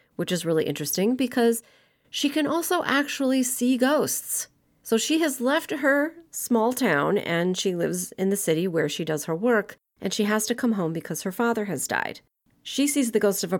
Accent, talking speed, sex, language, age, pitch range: American, 205 wpm, female, English, 30-49, 160-230 Hz